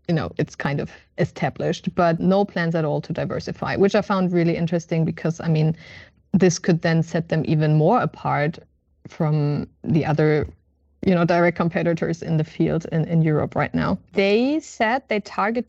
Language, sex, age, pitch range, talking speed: English, female, 20-39, 160-200 Hz, 185 wpm